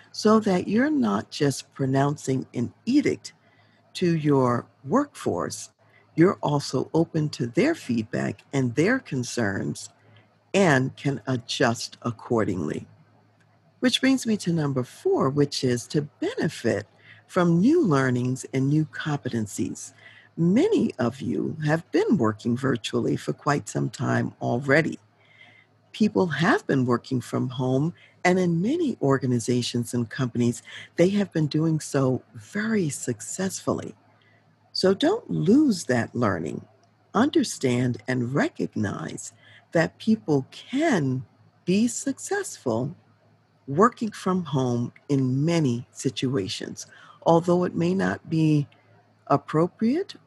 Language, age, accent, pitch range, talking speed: English, 50-69, American, 125-185 Hz, 115 wpm